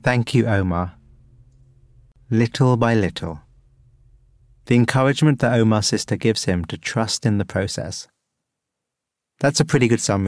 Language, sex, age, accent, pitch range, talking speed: English, male, 30-49, British, 100-125 Hz, 135 wpm